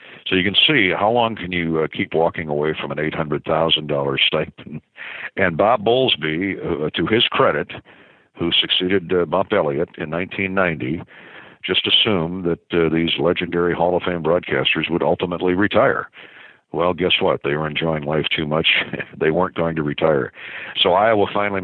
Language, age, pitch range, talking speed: English, 60-79, 75-90 Hz, 165 wpm